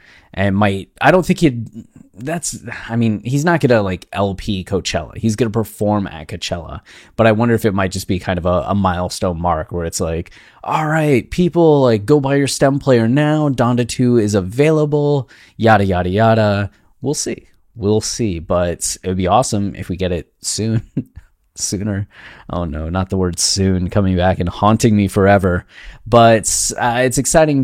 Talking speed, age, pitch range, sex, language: 185 wpm, 20-39, 95-115 Hz, male, English